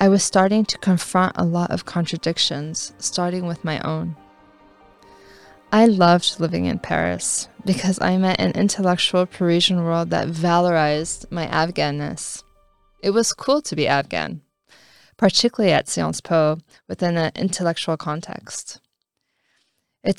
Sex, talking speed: female, 130 wpm